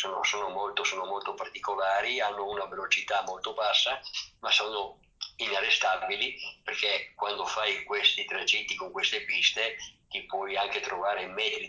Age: 50-69